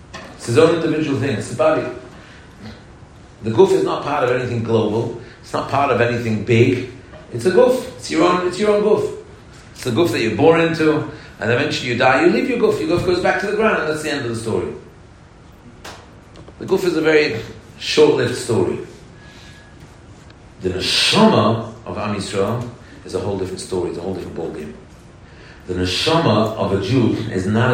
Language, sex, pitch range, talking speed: English, male, 110-155 Hz, 195 wpm